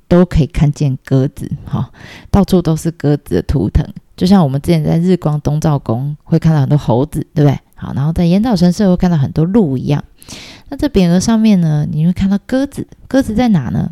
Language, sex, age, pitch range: Chinese, female, 20-39, 150-195 Hz